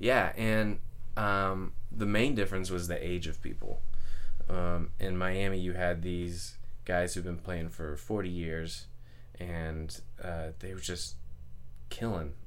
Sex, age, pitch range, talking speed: male, 20-39, 85-100 Hz, 145 wpm